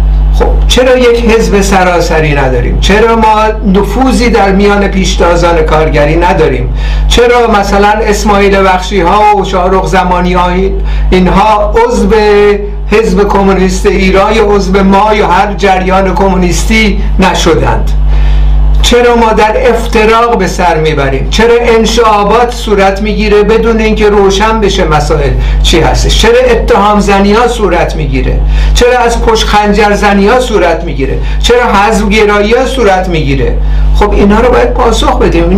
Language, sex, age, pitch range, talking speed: Persian, male, 60-79, 185-220 Hz, 125 wpm